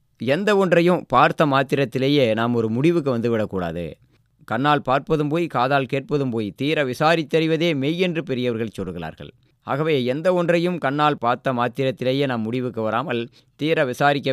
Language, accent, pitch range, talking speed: Tamil, native, 120-150 Hz, 130 wpm